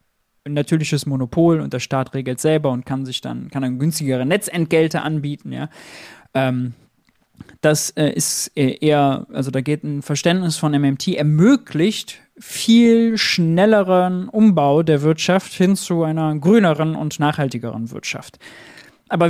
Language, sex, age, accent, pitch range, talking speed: German, male, 20-39, German, 140-175 Hz, 130 wpm